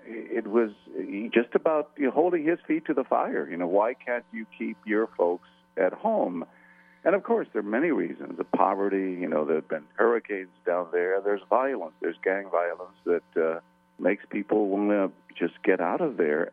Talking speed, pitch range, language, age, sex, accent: 185 wpm, 90-120 Hz, English, 50-69, male, American